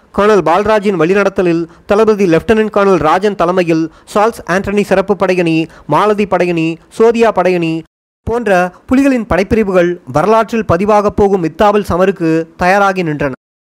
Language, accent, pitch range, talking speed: Tamil, native, 165-210 Hz, 115 wpm